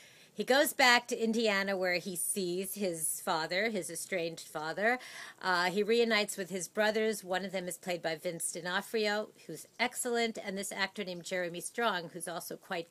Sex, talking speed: female, 175 wpm